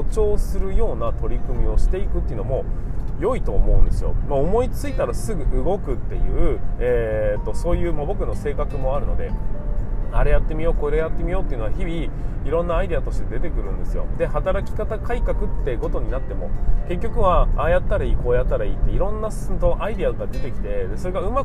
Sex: male